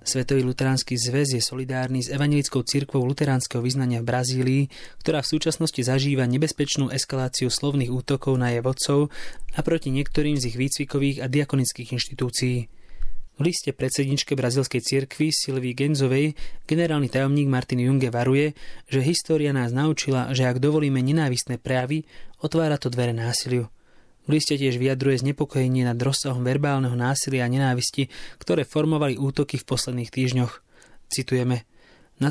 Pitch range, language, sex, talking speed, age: 125-140 Hz, English, male, 140 wpm, 20-39